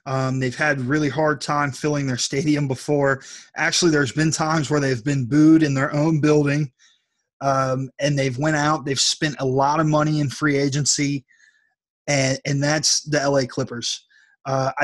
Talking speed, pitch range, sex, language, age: 175 wpm, 135-150 Hz, male, English, 20-39